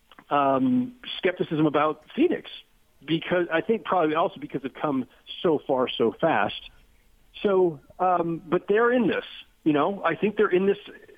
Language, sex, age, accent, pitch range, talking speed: English, male, 50-69, American, 150-205 Hz, 155 wpm